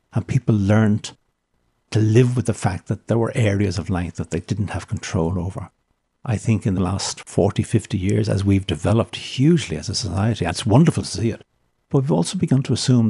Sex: male